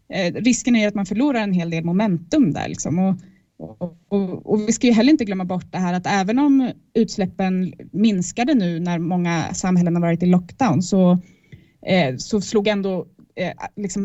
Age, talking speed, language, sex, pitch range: 20-39, 190 wpm, English, female, 180-225 Hz